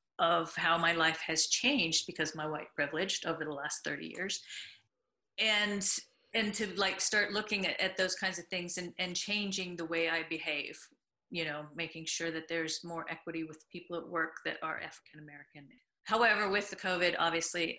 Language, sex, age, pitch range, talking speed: English, female, 40-59, 160-180 Hz, 180 wpm